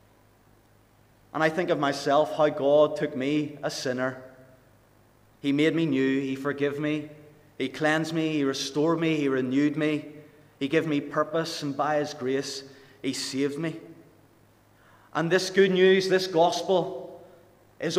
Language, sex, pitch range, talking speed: English, male, 140-170 Hz, 150 wpm